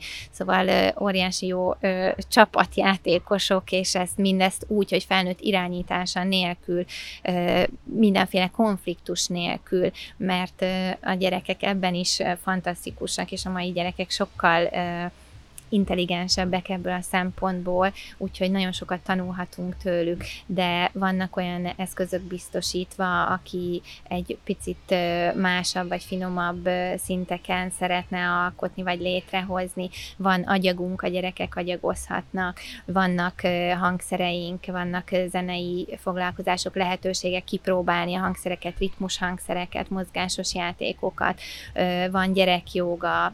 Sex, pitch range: female, 180-185 Hz